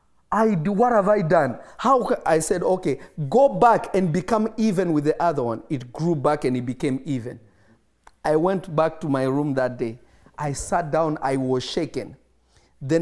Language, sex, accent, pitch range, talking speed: English, male, South African, 130-175 Hz, 190 wpm